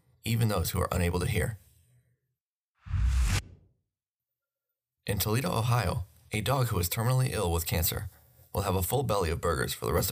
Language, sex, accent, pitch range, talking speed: English, male, American, 90-125 Hz, 165 wpm